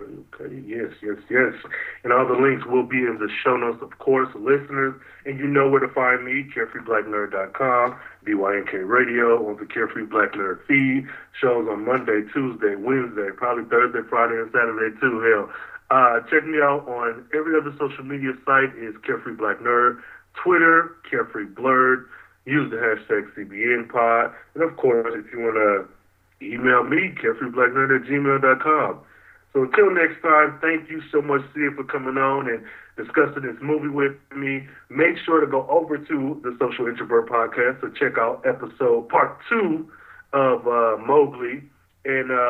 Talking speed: 160 wpm